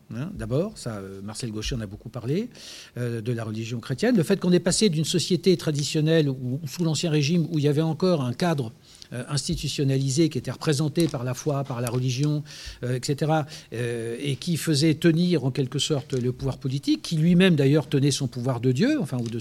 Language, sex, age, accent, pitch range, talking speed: French, male, 60-79, French, 125-160 Hz, 195 wpm